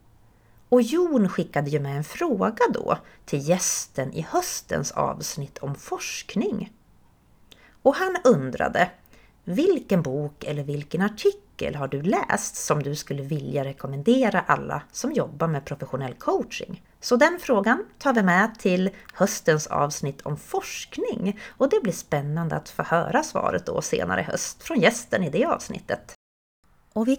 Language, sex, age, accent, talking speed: Swedish, female, 30-49, native, 145 wpm